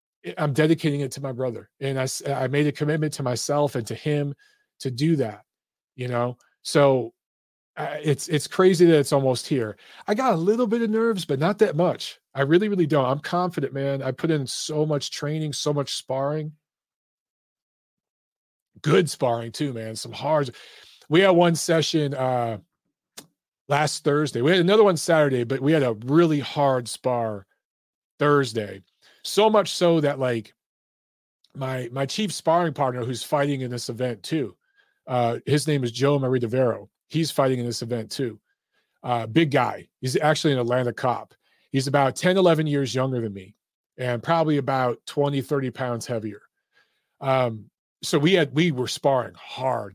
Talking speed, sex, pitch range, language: 175 wpm, male, 125-155 Hz, English